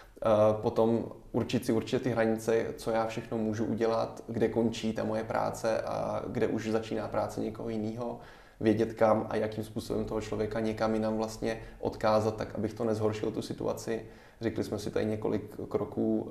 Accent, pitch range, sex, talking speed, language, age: native, 110-115 Hz, male, 170 wpm, Czech, 20-39